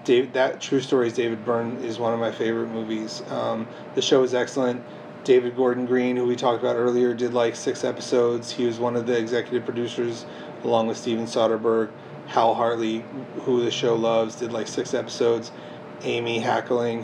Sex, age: male, 30-49